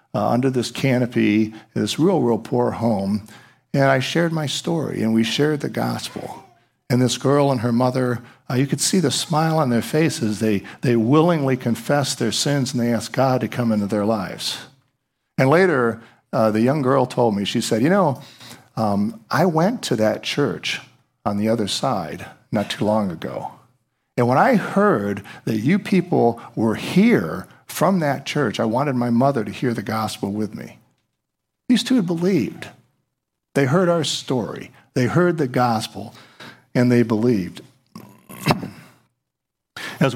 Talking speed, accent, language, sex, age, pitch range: 170 wpm, American, English, male, 50-69, 115-145 Hz